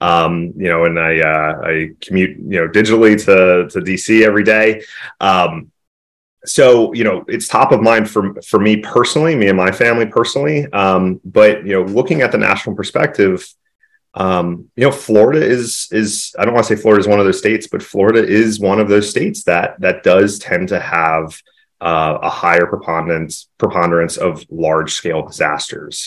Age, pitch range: 30-49, 80-110 Hz